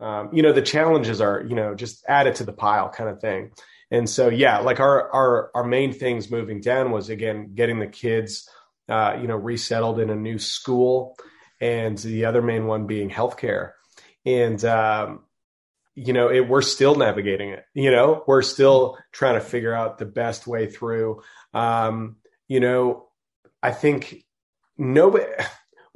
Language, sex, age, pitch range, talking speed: English, male, 30-49, 110-130 Hz, 175 wpm